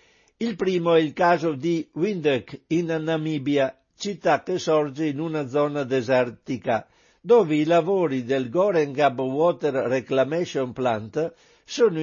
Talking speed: 125 wpm